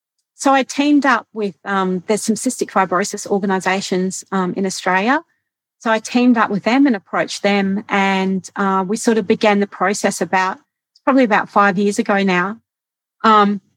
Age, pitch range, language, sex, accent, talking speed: 40-59, 190-220 Hz, English, female, Australian, 170 wpm